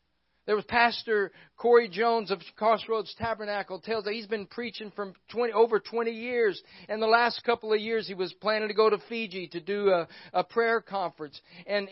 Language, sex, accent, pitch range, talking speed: English, male, American, 205-250 Hz, 180 wpm